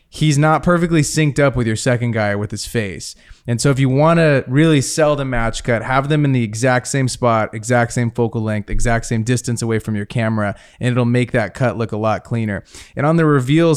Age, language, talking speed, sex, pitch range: 20-39, English, 230 wpm, male, 110-135 Hz